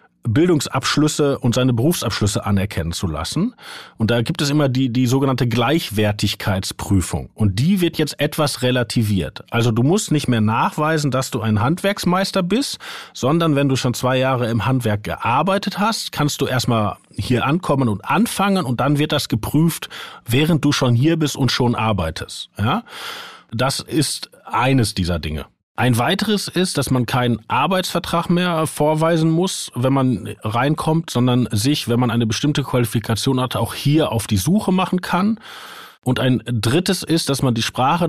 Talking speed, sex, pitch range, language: 165 wpm, male, 115-155 Hz, German